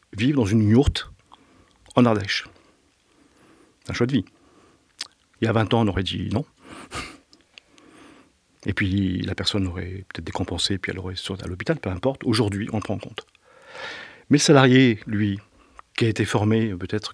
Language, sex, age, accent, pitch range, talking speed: French, male, 40-59, French, 95-115 Hz, 175 wpm